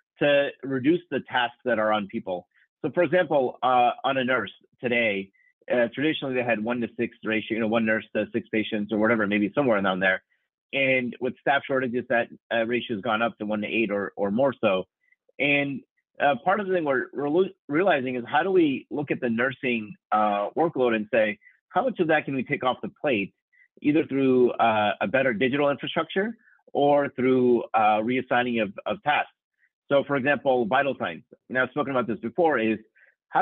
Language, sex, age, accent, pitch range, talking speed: English, male, 30-49, American, 115-145 Hz, 200 wpm